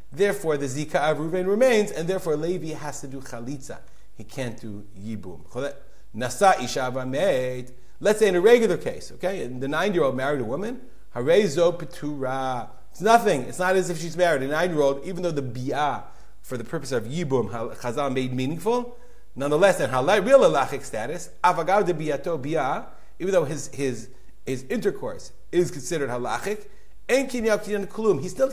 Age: 40-59